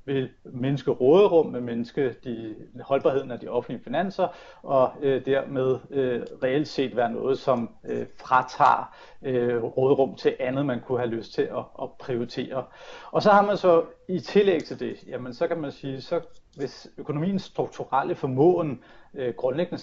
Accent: native